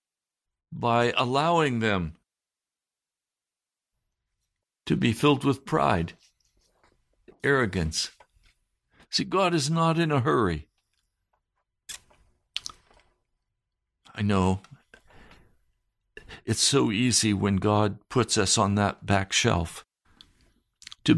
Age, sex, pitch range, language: 60-79, male, 100-125 Hz, English